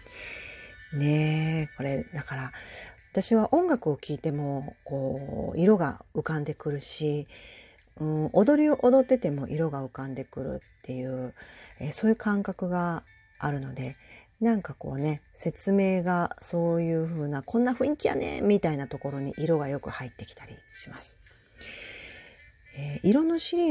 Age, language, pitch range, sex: 40-59, Japanese, 135-185 Hz, female